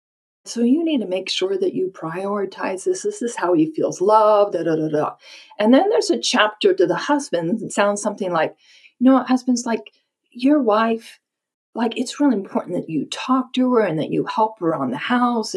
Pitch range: 200-280 Hz